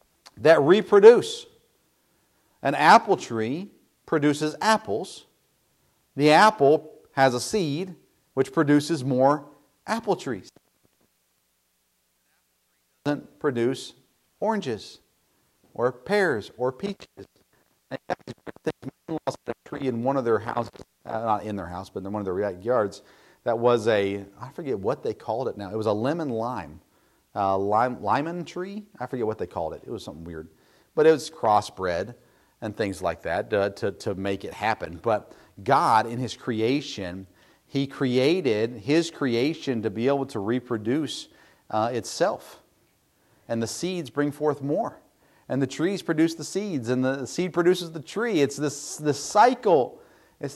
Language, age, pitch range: English, 50-69, 115-165 Hz